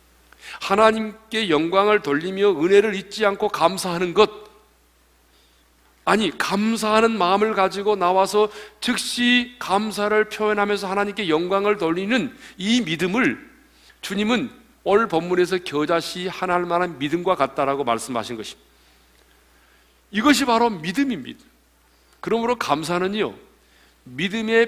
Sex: male